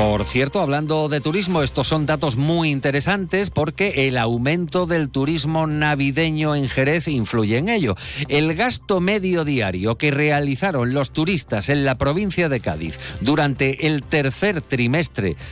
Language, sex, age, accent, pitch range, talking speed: Spanish, male, 50-69, Spanish, 115-160 Hz, 145 wpm